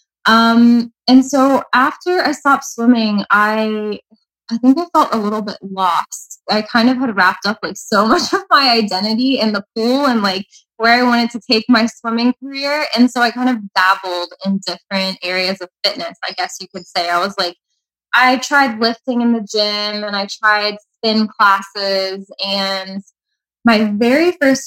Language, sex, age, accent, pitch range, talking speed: English, female, 20-39, American, 195-255 Hz, 180 wpm